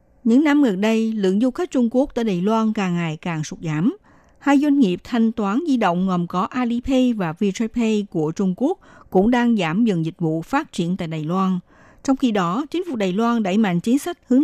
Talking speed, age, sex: 230 wpm, 60-79, female